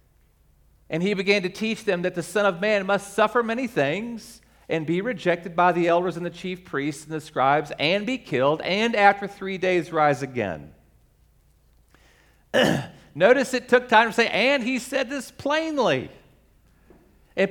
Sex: male